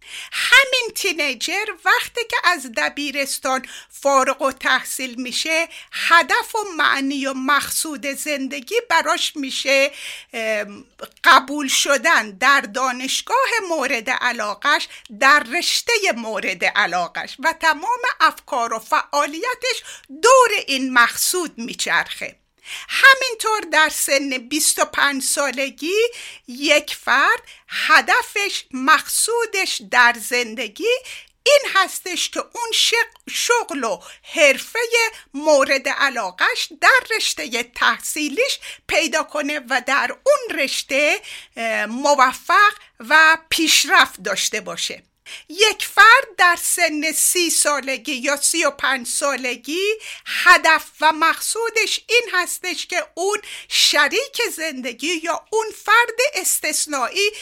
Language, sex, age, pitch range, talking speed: Persian, female, 50-69, 275-400 Hz, 100 wpm